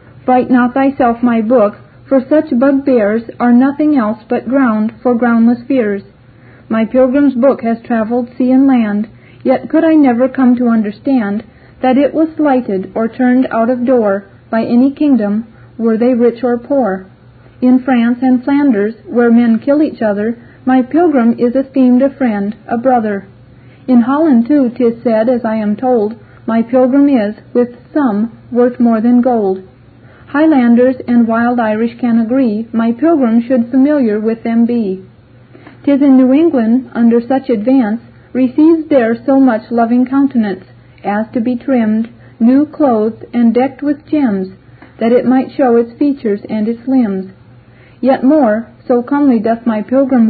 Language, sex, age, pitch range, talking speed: English, female, 40-59, 225-265 Hz, 160 wpm